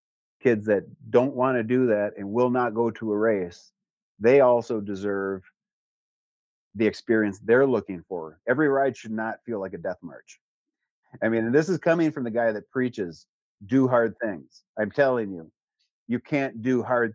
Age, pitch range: 40-59, 105-125 Hz